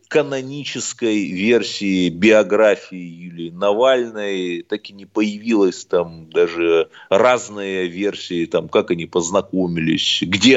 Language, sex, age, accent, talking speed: Russian, male, 30-49, native, 100 wpm